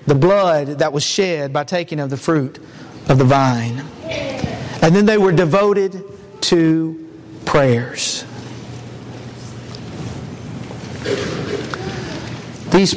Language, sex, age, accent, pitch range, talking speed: English, male, 50-69, American, 145-200 Hz, 95 wpm